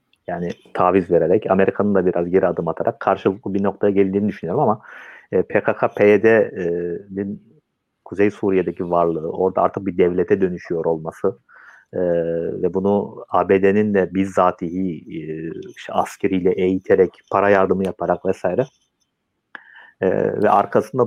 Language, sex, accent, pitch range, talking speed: Turkish, male, native, 85-100 Hz, 110 wpm